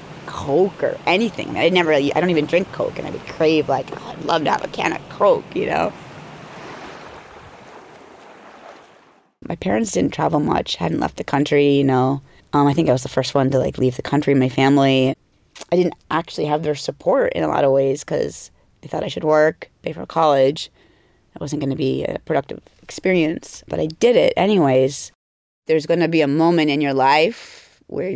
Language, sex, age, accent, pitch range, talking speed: English, female, 30-49, American, 135-170 Hz, 200 wpm